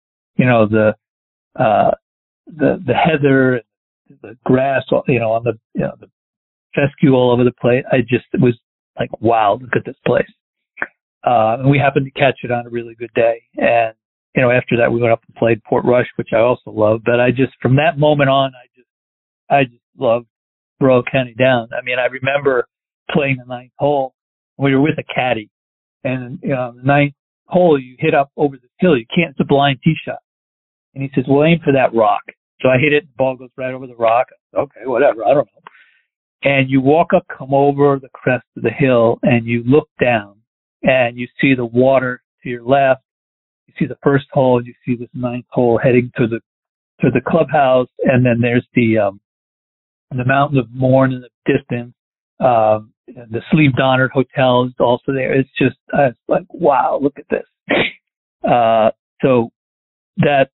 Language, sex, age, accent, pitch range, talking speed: English, male, 50-69, American, 115-135 Hz, 205 wpm